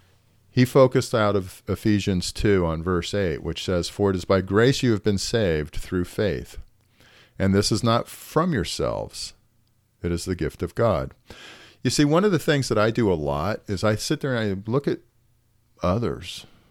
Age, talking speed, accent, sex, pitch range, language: 50-69, 195 wpm, American, male, 95-120 Hz, English